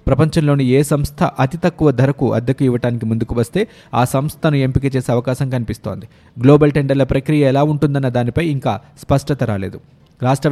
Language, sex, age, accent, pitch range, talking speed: Telugu, male, 20-39, native, 125-150 Hz, 150 wpm